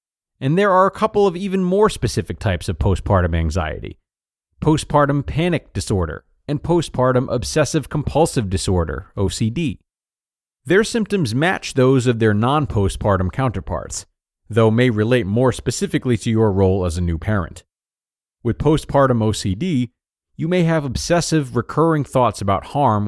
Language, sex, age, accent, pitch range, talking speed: English, male, 40-59, American, 95-140 Hz, 135 wpm